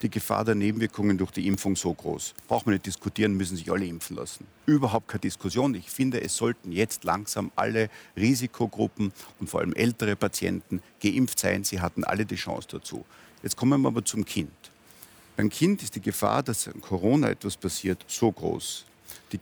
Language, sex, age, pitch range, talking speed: German, male, 50-69, 95-115 Hz, 185 wpm